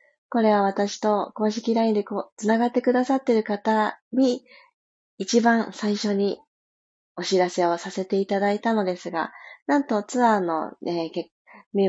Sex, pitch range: female, 190-235 Hz